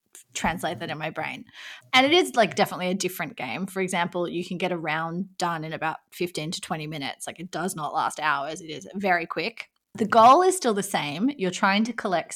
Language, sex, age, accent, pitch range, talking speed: English, female, 20-39, Australian, 175-210 Hz, 230 wpm